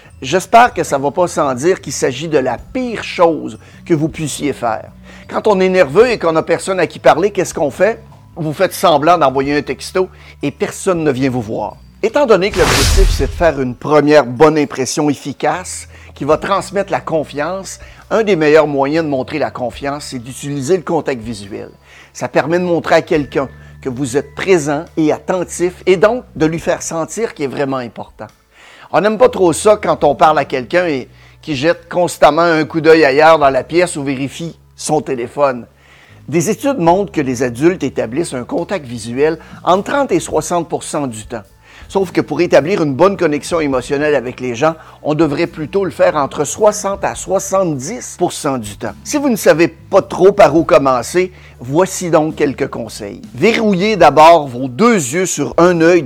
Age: 60-79